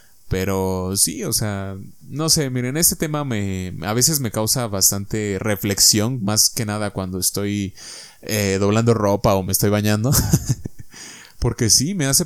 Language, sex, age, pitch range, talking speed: Spanish, male, 20-39, 100-135 Hz, 155 wpm